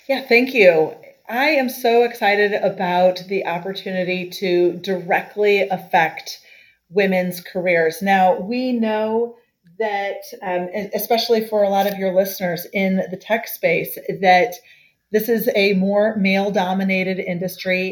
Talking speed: 125 wpm